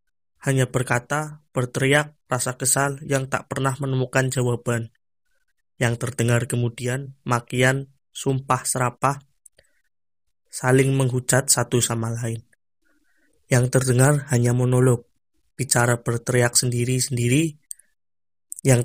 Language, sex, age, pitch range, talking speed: Indonesian, male, 20-39, 120-135 Hz, 90 wpm